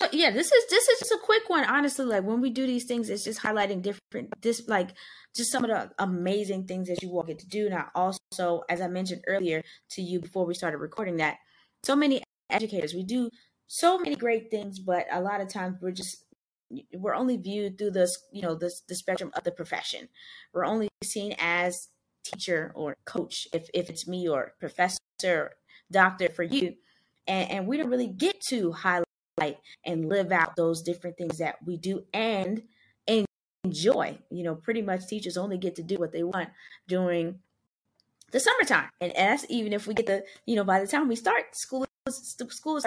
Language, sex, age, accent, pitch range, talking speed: English, female, 10-29, American, 175-235 Hz, 200 wpm